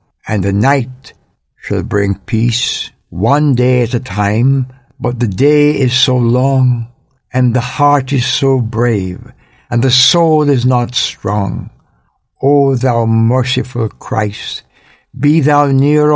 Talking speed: 135 wpm